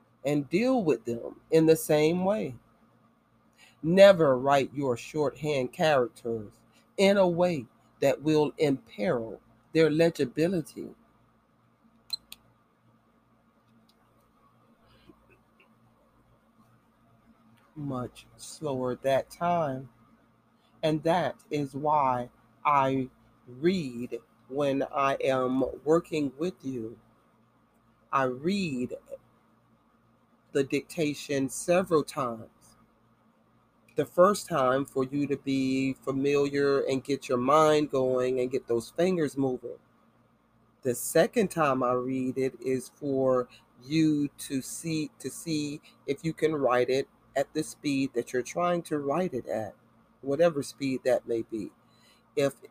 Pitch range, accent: 125-155 Hz, American